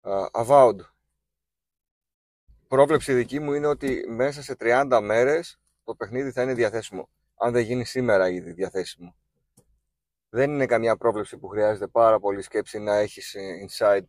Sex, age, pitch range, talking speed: male, 30-49, 100-140 Hz, 140 wpm